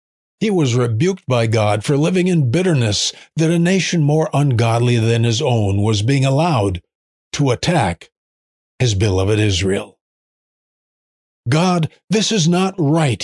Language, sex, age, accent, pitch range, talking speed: English, male, 50-69, American, 105-135 Hz, 135 wpm